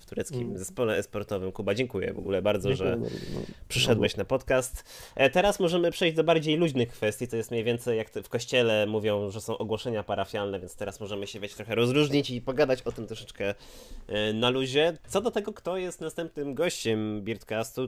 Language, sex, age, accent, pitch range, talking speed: Polish, male, 20-39, native, 105-130 Hz, 180 wpm